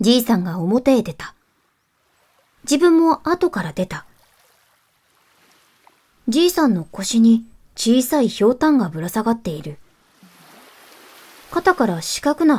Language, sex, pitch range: Japanese, male, 185-250 Hz